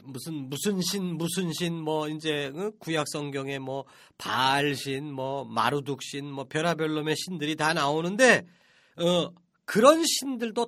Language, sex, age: Korean, male, 40-59